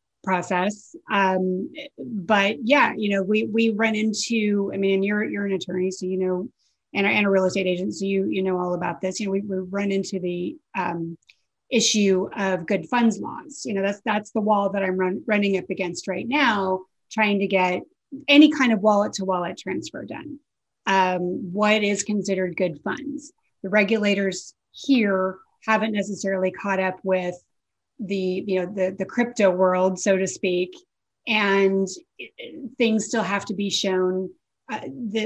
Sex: female